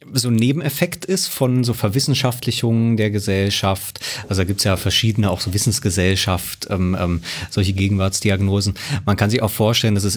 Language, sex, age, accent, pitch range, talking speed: German, male, 30-49, German, 95-115 Hz, 170 wpm